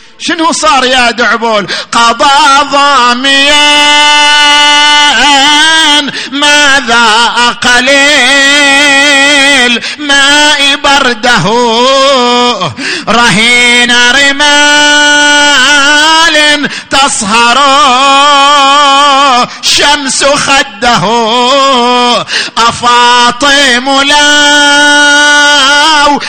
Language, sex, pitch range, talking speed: Arabic, male, 240-290 Hz, 40 wpm